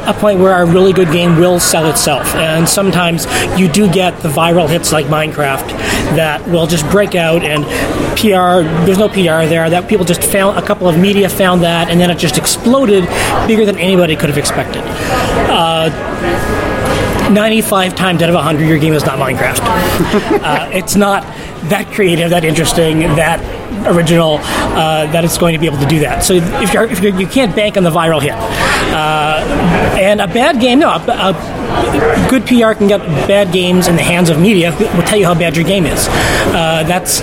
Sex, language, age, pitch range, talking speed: male, Russian, 20-39, 160-200 Hz, 200 wpm